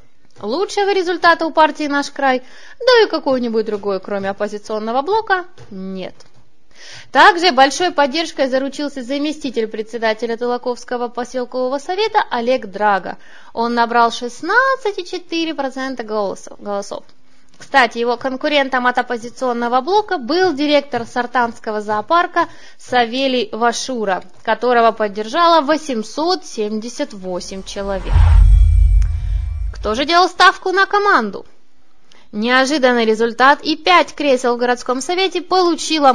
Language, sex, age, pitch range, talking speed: Russian, female, 20-39, 220-315 Hz, 100 wpm